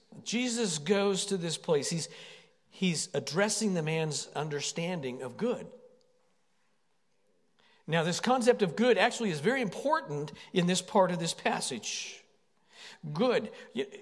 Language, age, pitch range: English, 50-69, 185-265 Hz